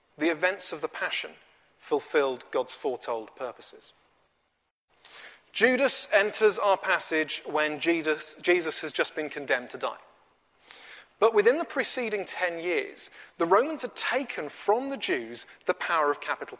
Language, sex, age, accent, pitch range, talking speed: English, male, 30-49, British, 165-260 Hz, 140 wpm